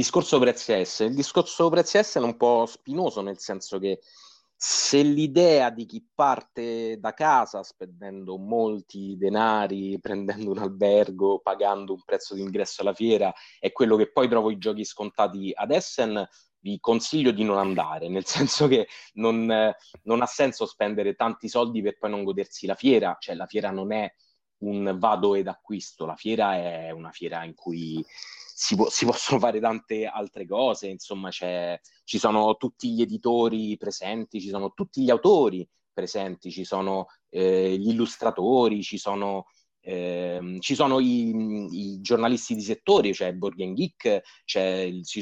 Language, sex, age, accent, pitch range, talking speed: Italian, male, 30-49, native, 95-115 Hz, 165 wpm